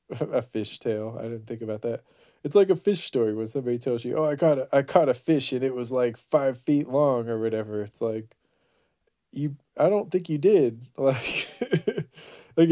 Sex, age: male, 20-39